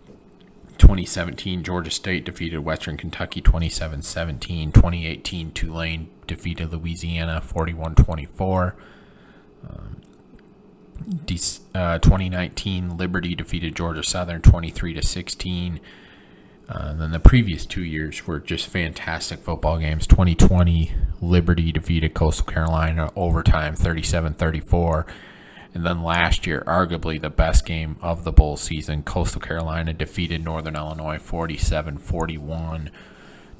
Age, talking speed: 30-49, 95 wpm